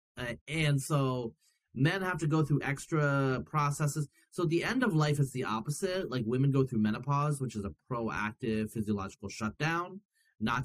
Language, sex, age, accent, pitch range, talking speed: English, male, 30-49, American, 110-145 Hz, 175 wpm